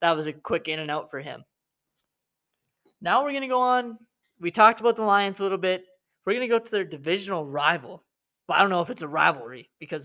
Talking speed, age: 245 wpm, 20-39